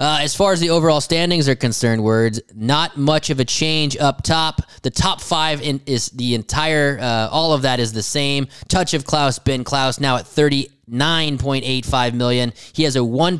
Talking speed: 195 wpm